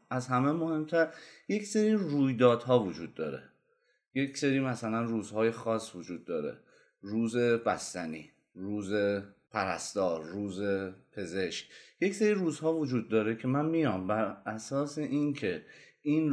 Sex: male